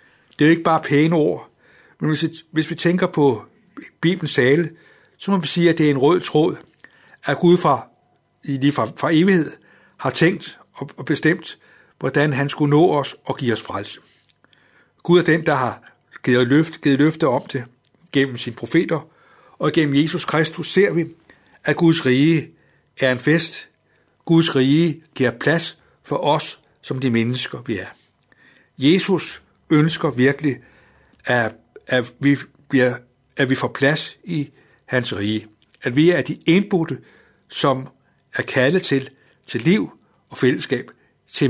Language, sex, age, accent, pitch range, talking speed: Danish, male, 60-79, native, 130-165 Hz, 160 wpm